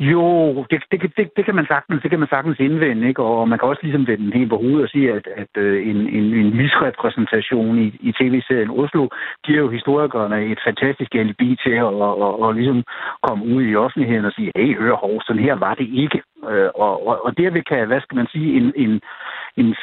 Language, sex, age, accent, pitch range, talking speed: Danish, male, 60-79, native, 115-165 Hz, 220 wpm